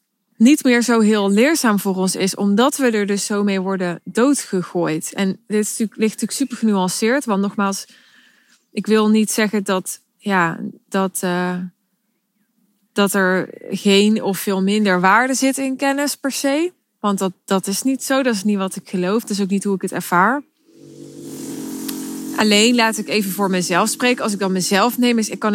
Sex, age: female, 20-39